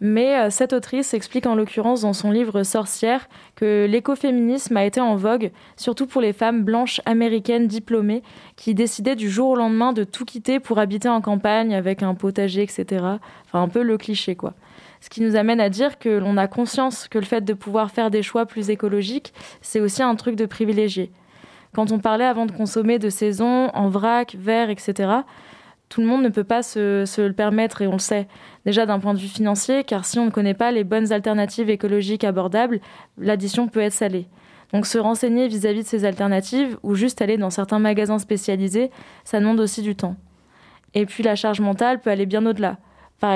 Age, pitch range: 20-39, 205-235 Hz